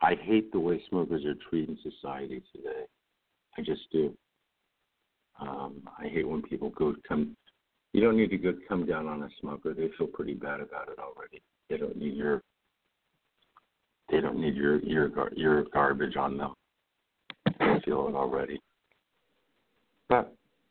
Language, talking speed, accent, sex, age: English, 160 wpm, American, male, 60-79